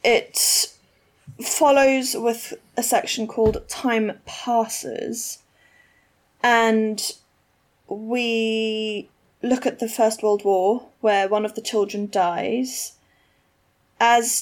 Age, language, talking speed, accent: 10-29, English, 95 wpm, British